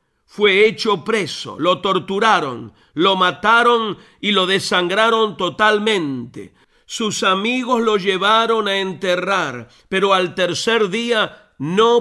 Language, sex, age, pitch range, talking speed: Spanish, male, 50-69, 180-220 Hz, 110 wpm